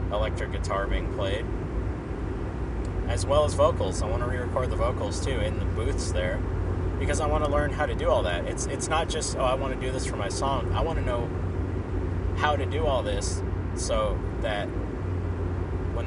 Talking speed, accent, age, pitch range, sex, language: 200 wpm, American, 20-39, 90-95 Hz, male, English